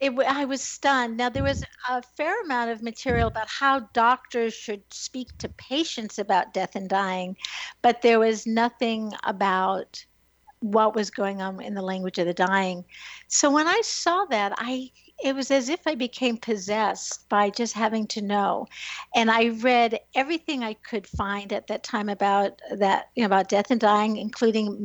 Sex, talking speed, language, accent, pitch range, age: female, 175 wpm, English, American, 210-260 Hz, 60-79